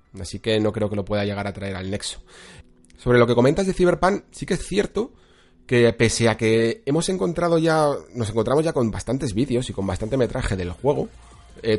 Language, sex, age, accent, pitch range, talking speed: Spanish, male, 30-49, Spanish, 100-120 Hz, 215 wpm